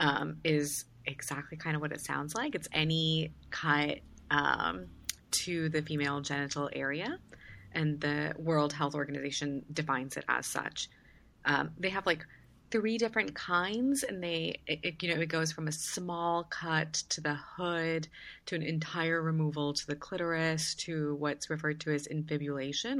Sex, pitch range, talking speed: female, 145-165 Hz, 160 wpm